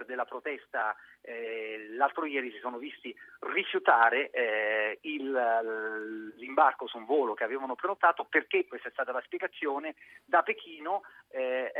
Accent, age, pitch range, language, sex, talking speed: native, 40-59, 120-175 Hz, Italian, male, 135 wpm